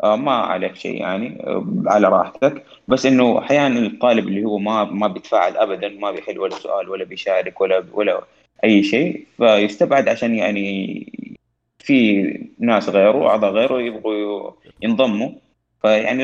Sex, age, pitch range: male, 20-39, 95-110 Hz